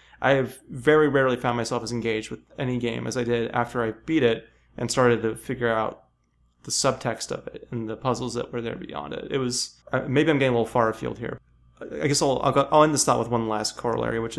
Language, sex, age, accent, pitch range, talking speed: English, male, 30-49, American, 115-130 Hz, 245 wpm